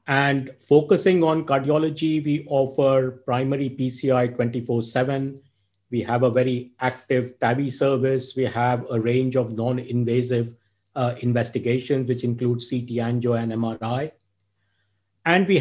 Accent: Indian